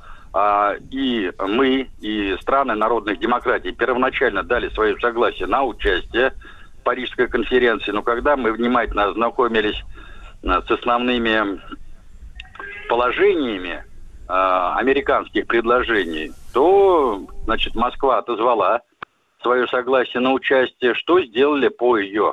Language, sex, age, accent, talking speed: Russian, male, 50-69, native, 100 wpm